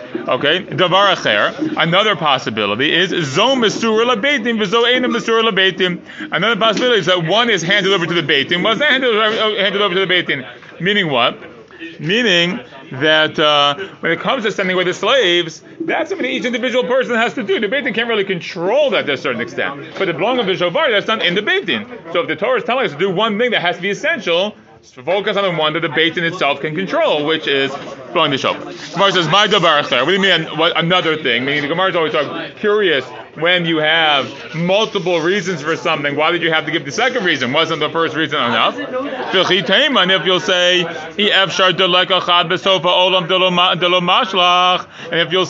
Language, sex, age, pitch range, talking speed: English, male, 30-49, 170-220 Hz, 185 wpm